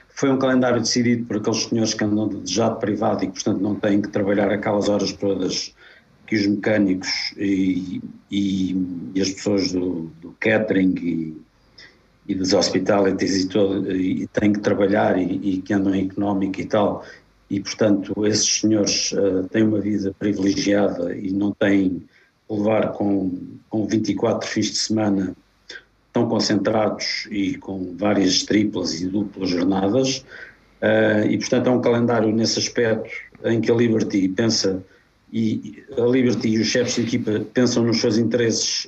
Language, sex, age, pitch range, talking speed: Portuguese, male, 50-69, 100-115 Hz, 160 wpm